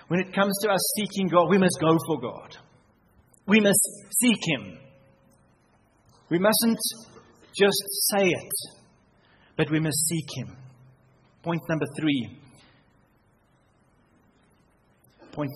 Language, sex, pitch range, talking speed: English, male, 130-180 Hz, 115 wpm